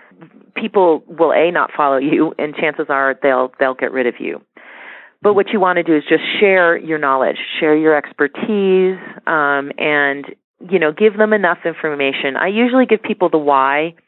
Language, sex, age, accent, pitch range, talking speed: English, female, 40-59, American, 150-215 Hz, 185 wpm